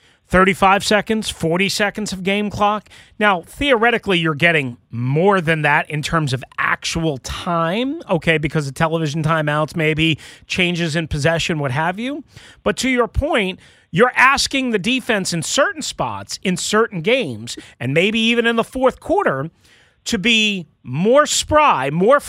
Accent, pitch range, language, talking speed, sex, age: American, 170-240 Hz, English, 155 wpm, male, 40-59